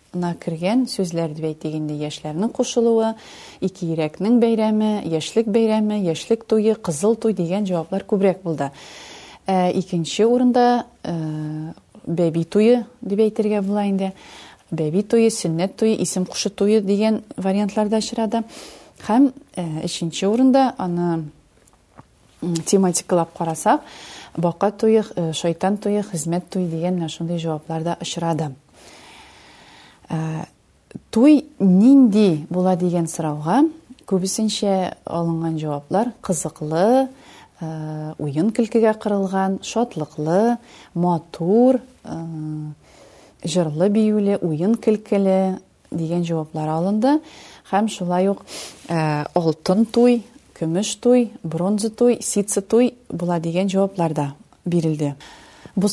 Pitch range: 165-220 Hz